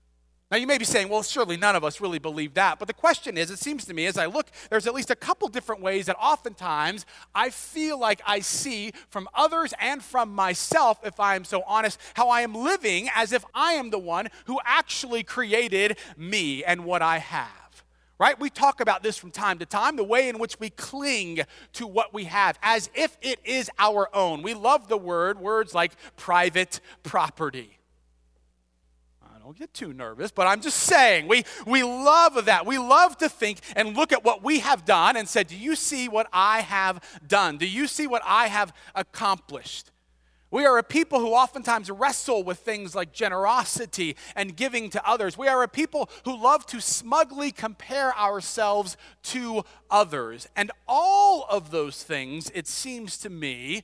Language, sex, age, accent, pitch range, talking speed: English, male, 30-49, American, 180-255 Hz, 195 wpm